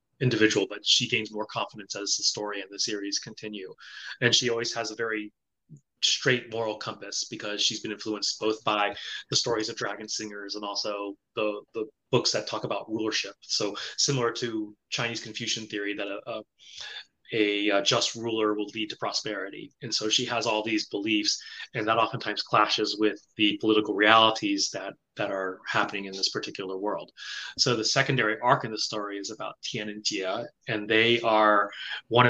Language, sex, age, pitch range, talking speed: English, male, 30-49, 105-120 Hz, 180 wpm